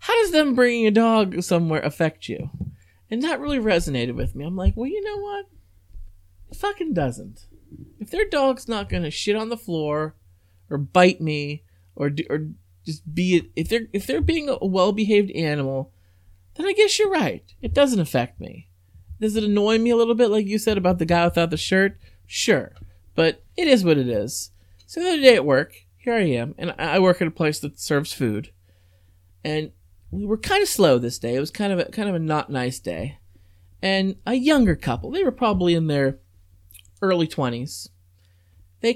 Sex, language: male, English